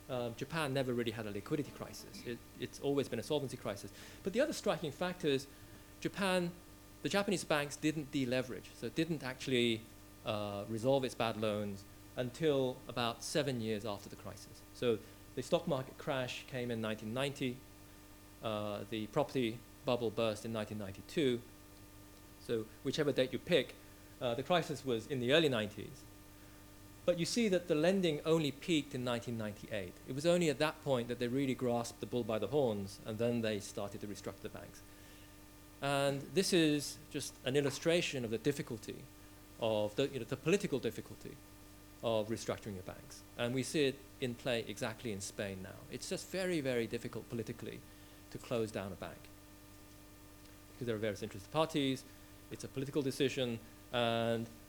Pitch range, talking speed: 100-140 Hz, 170 wpm